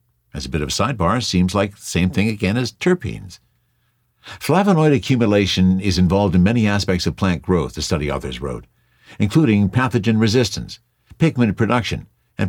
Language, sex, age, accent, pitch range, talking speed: English, male, 60-79, American, 90-120 Hz, 165 wpm